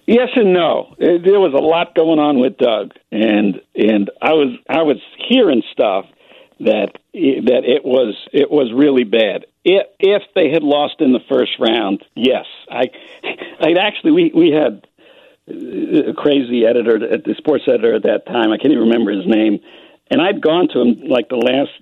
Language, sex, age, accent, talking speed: English, male, 50-69, American, 185 wpm